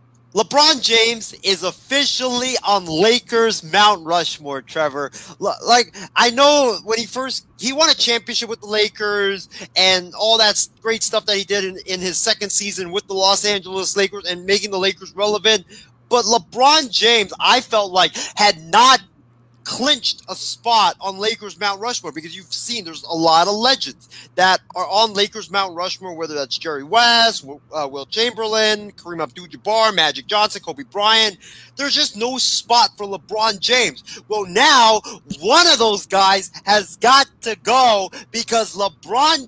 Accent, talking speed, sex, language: American, 165 wpm, male, English